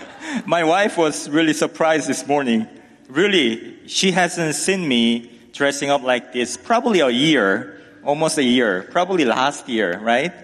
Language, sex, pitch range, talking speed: English, male, 120-175 Hz, 150 wpm